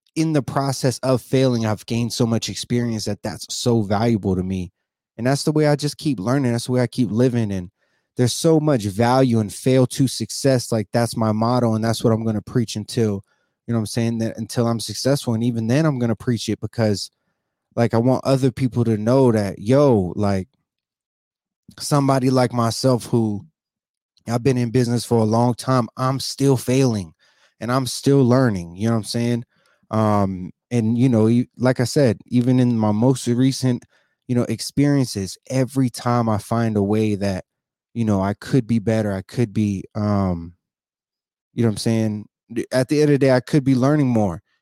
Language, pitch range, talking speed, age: English, 110-130 Hz, 205 wpm, 20-39